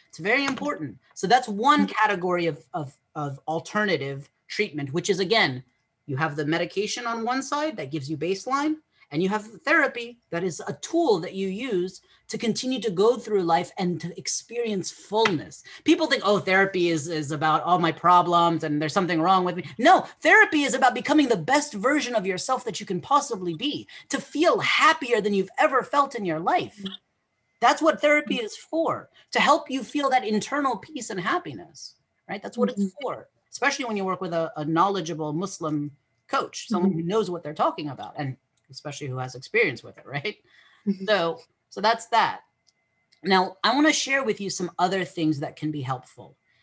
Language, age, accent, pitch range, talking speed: English, 30-49, American, 160-245 Hz, 190 wpm